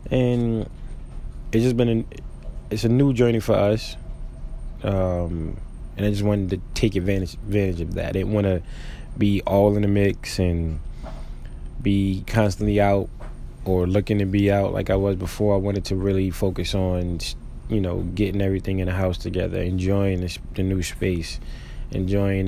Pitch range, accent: 90-105 Hz, American